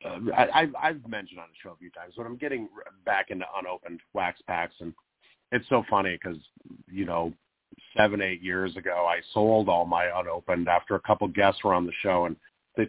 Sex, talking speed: male, 210 wpm